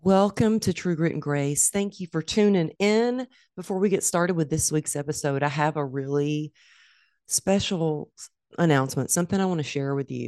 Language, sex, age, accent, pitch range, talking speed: English, female, 40-59, American, 130-170 Hz, 185 wpm